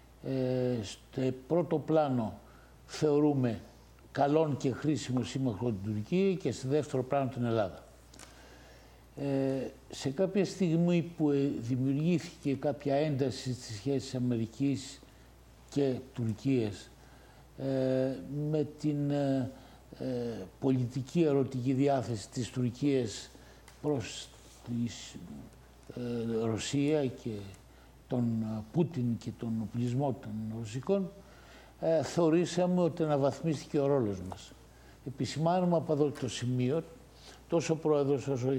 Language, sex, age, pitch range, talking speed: English, male, 60-79, 120-150 Hz, 95 wpm